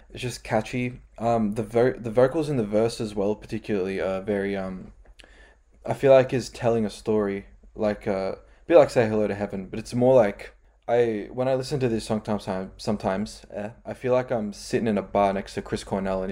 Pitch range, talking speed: 100-115 Hz, 225 wpm